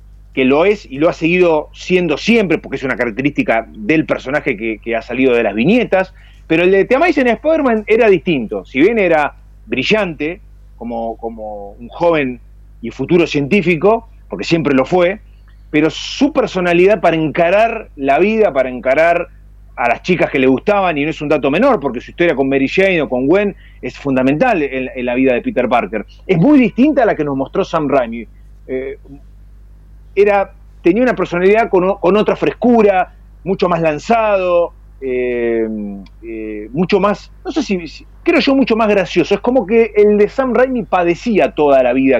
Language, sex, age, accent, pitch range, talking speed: Spanish, male, 30-49, Argentinian, 115-195 Hz, 185 wpm